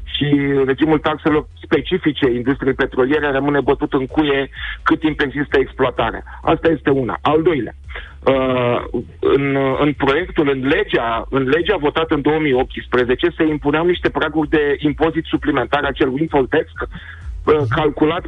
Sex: male